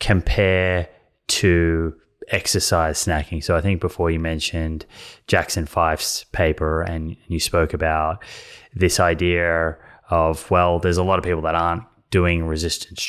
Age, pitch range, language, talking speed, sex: 20-39, 80-90 Hz, English, 140 wpm, male